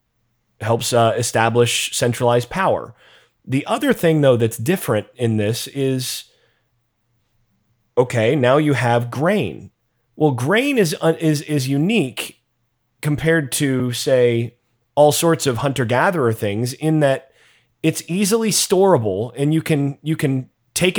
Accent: American